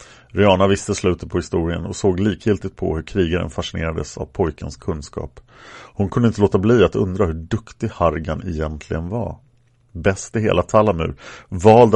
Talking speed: 160 wpm